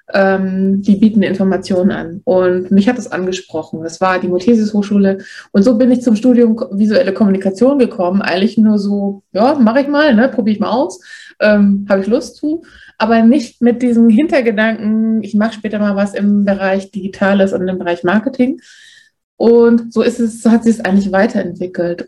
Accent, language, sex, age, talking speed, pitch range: German, German, female, 20-39, 180 wpm, 195-235 Hz